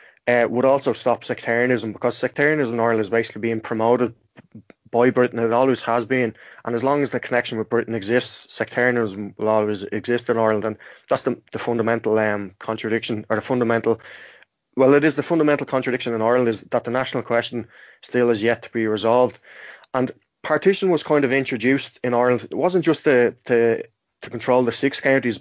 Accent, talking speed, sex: Irish, 190 wpm, male